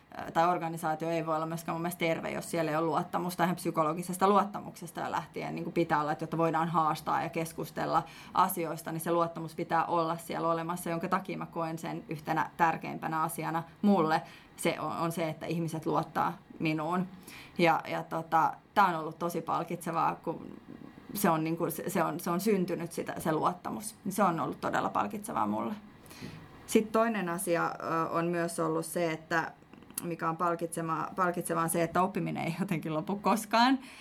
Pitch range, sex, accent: 165-190 Hz, female, native